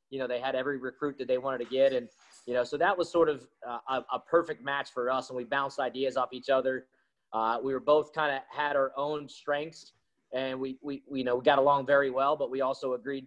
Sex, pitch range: male, 125-150 Hz